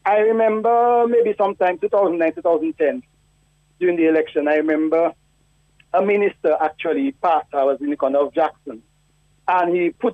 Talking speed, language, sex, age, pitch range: 150 wpm, English, male, 40-59, 150-220 Hz